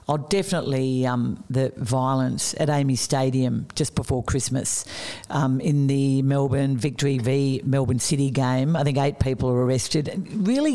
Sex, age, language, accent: female, 50-69, English, Australian